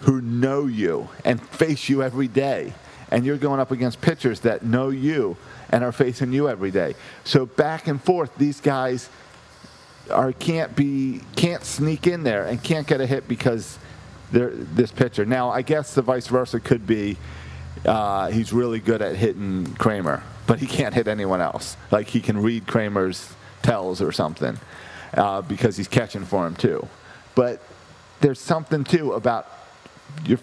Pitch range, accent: 110-135 Hz, American